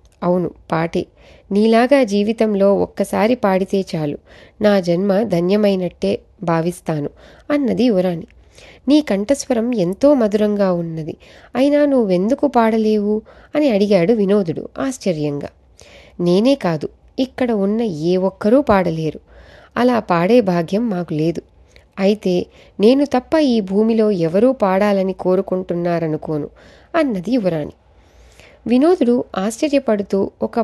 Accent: native